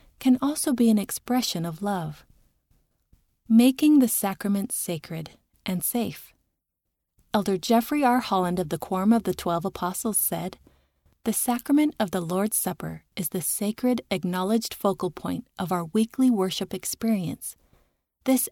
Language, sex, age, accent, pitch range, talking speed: English, female, 30-49, American, 180-240 Hz, 140 wpm